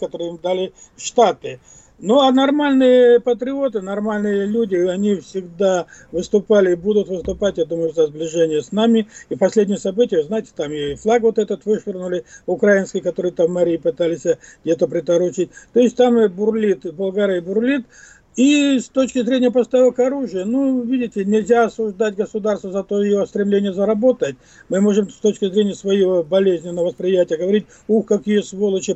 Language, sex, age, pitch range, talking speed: Russian, male, 50-69, 185-240 Hz, 155 wpm